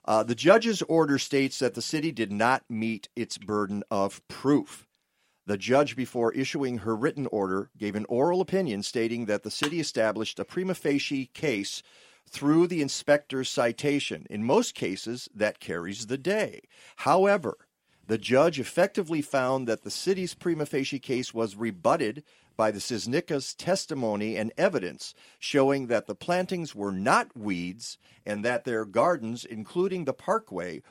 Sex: male